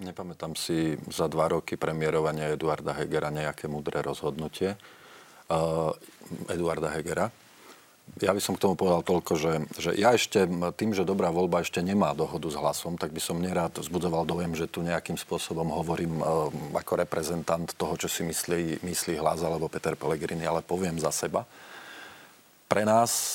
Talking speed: 160 wpm